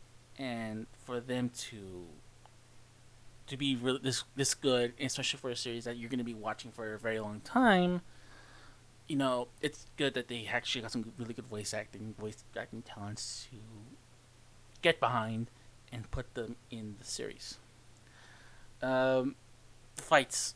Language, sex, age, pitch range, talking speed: English, male, 30-49, 110-125 Hz, 155 wpm